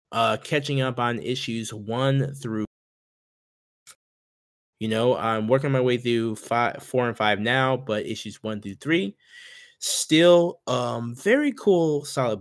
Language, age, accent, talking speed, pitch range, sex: English, 20-39, American, 140 wpm, 110-130 Hz, male